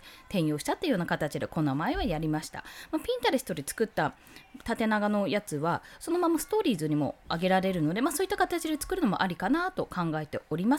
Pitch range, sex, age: 180-290 Hz, female, 20-39